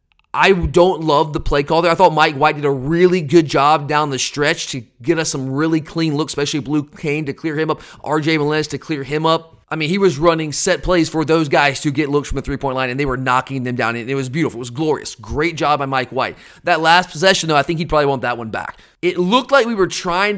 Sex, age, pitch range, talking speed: male, 30-49, 145-180 Hz, 270 wpm